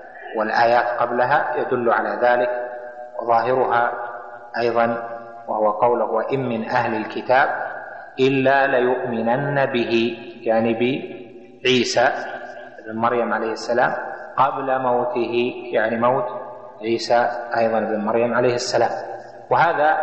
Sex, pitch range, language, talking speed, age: male, 115-130 Hz, Arabic, 100 wpm, 30-49